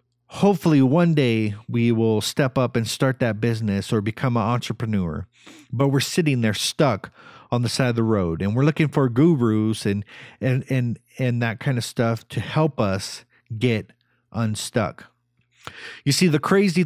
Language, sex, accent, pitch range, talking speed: English, male, American, 115-145 Hz, 170 wpm